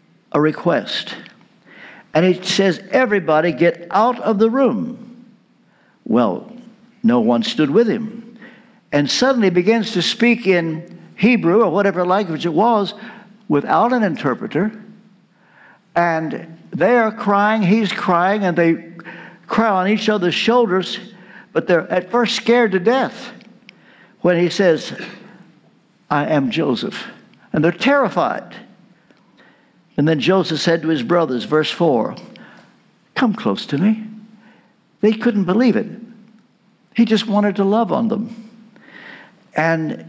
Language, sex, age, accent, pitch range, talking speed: English, male, 60-79, American, 175-225 Hz, 130 wpm